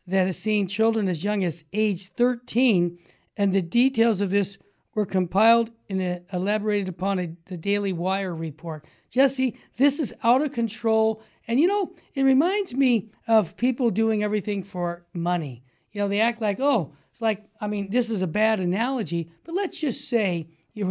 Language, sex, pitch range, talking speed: English, male, 185-240 Hz, 175 wpm